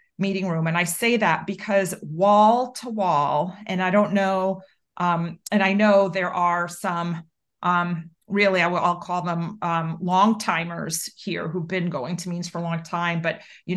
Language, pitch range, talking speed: English, 170-195 Hz, 190 wpm